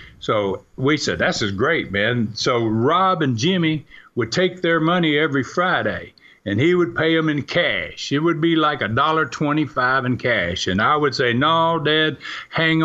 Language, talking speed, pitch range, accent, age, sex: English, 190 wpm, 110-145 Hz, American, 50-69, male